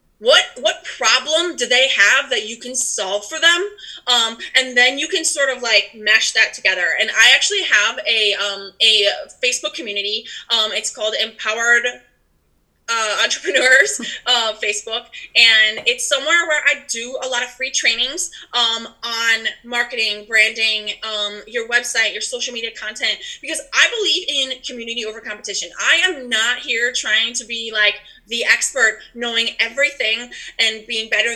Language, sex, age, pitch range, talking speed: English, female, 20-39, 220-285 Hz, 160 wpm